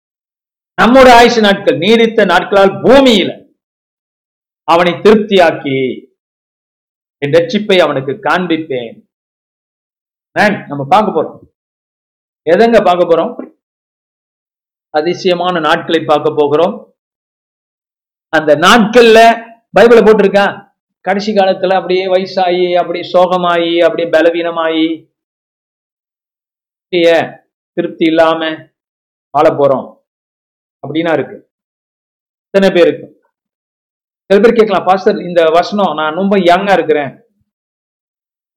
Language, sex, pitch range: Tamil, male, 155-195 Hz